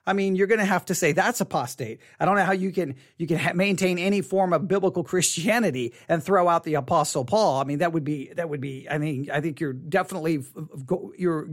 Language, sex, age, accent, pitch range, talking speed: English, male, 40-59, American, 150-200 Hz, 240 wpm